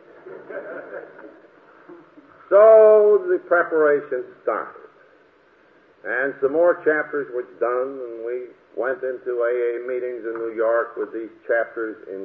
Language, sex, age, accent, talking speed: English, male, 50-69, American, 115 wpm